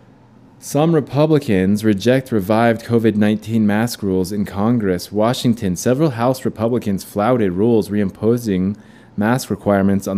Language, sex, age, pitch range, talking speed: English, male, 20-39, 95-120 Hz, 110 wpm